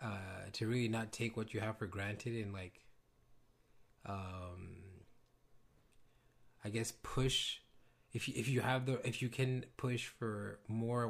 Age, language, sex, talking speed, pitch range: 20-39, English, male, 150 wpm, 105-120 Hz